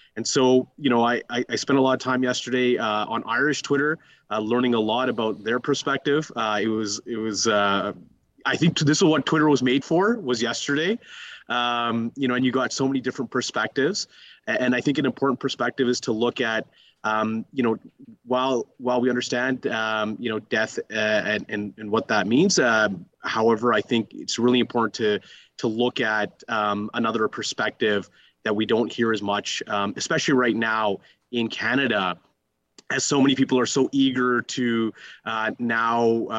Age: 30-49